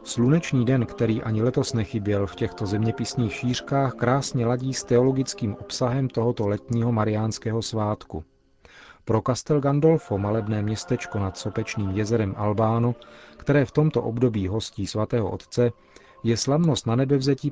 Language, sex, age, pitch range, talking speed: Czech, male, 40-59, 105-125 Hz, 135 wpm